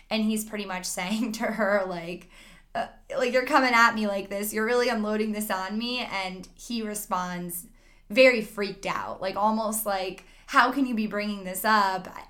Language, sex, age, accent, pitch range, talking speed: English, female, 10-29, American, 190-230 Hz, 185 wpm